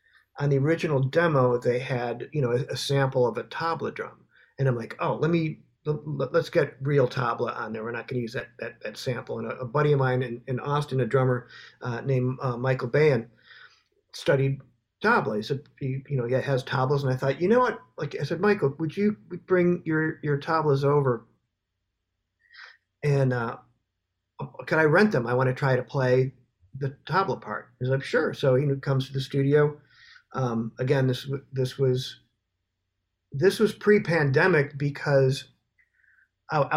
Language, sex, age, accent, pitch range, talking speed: English, male, 50-69, American, 125-150 Hz, 185 wpm